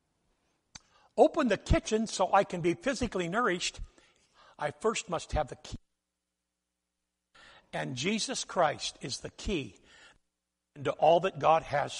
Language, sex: English, male